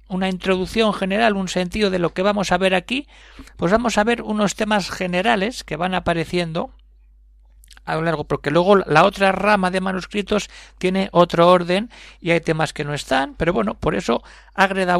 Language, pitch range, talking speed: Spanish, 155-195 Hz, 185 wpm